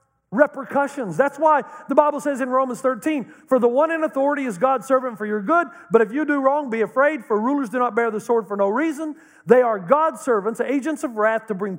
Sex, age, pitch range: male, 50-69, 200-285 Hz